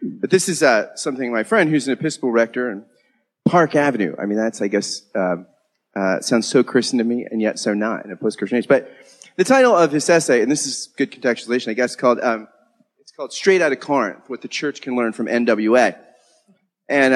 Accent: American